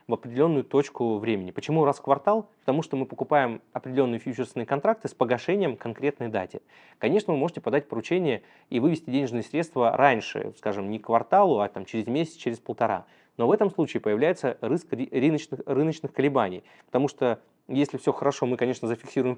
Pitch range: 115-140 Hz